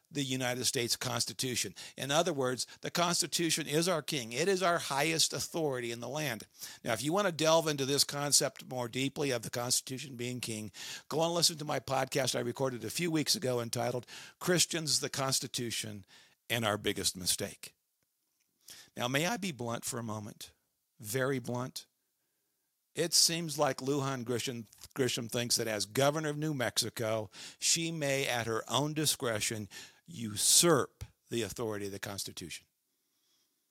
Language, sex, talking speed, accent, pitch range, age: English, male, 160 wpm, American, 115-150 Hz, 50-69